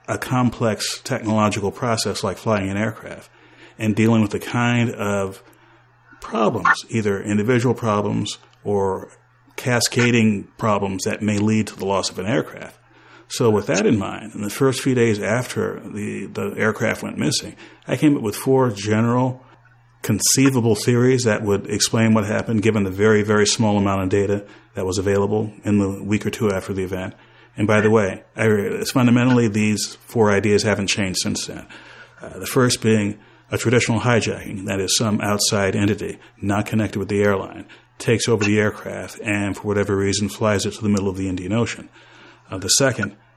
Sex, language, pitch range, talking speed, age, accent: male, English, 100-115 Hz, 175 wpm, 40-59, American